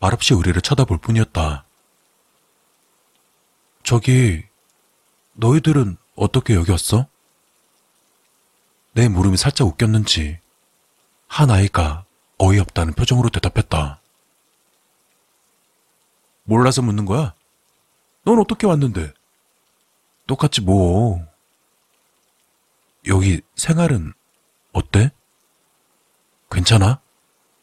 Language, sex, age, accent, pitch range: Korean, male, 40-59, native, 95-150 Hz